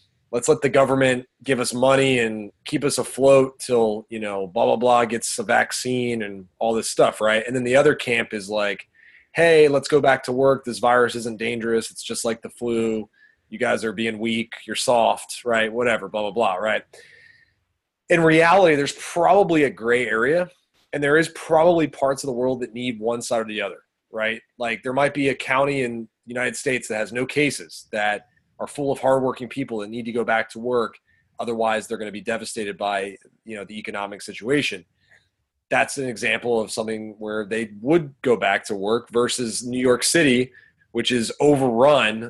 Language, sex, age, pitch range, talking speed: English, male, 30-49, 110-140 Hz, 200 wpm